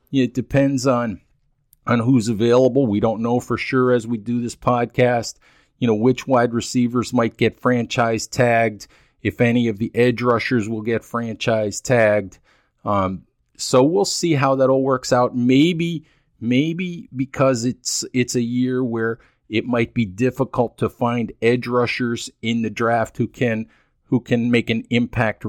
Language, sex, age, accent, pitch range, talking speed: English, male, 40-59, American, 115-135 Hz, 165 wpm